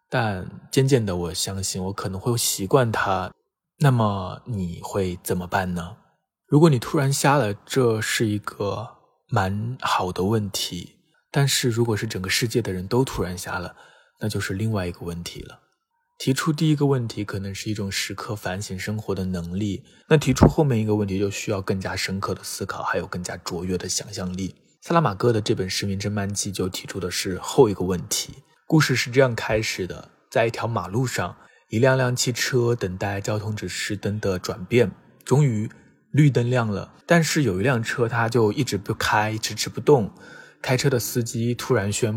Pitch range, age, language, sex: 95-125 Hz, 20-39, Chinese, male